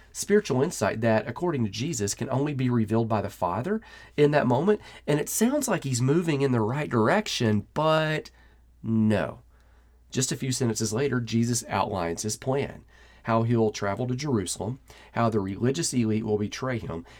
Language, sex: English, male